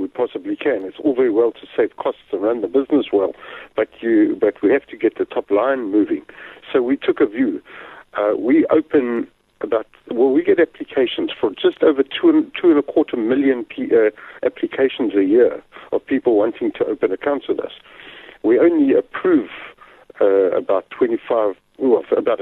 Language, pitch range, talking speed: English, 335-445 Hz, 185 wpm